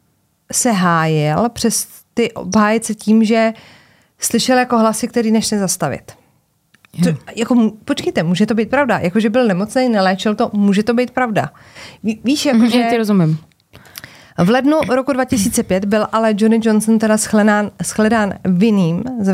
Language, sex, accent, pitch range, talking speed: Czech, female, native, 170-225 Hz, 135 wpm